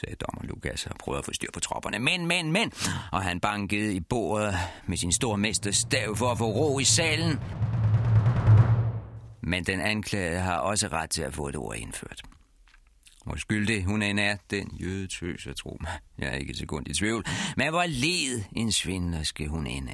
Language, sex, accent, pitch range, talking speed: Danish, male, native, 85-130 Hz, 190 wpm